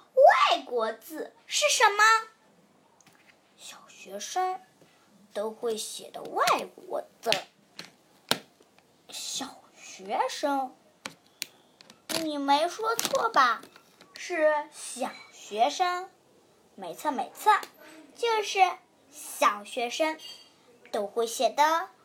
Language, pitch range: Chinese, 255-365 Hz